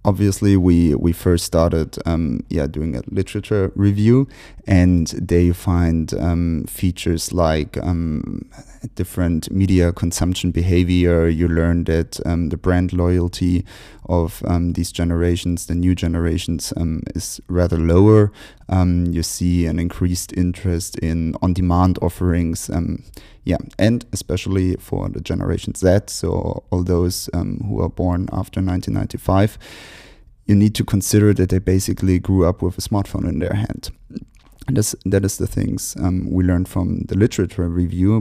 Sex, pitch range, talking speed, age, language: male, 85-100 Hz, 150 wpm, 30-49, English